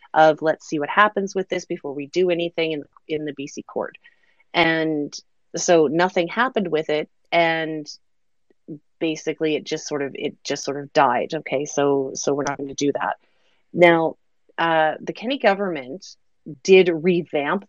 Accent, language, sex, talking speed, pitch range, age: American, English, female, 165 wpm, 155-195 Hz, 30-49